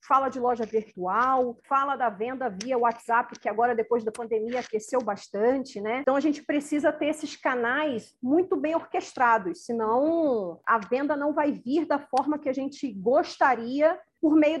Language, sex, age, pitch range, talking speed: Portuguese, female, 40-59, 235-305 Hz, 170 wpm